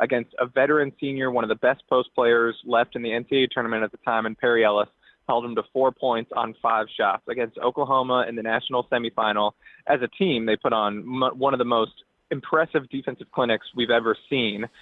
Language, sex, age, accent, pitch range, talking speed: English, male, 20-39, American, 120-150 Hz, 205 wpm